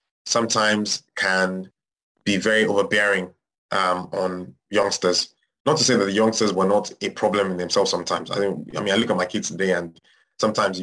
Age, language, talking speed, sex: 20-39, English, 170 wpm, male